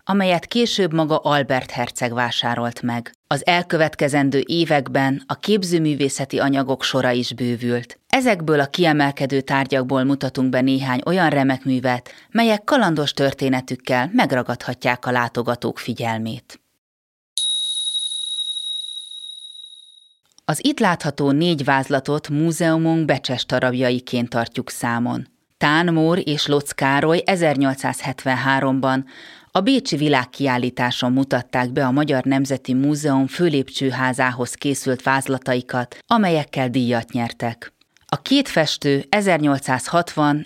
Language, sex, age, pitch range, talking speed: Hungarian, female, 30-49, 125-150 Hz, 100 wpm